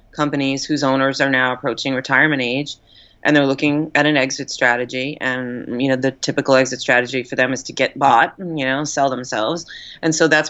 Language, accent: English, American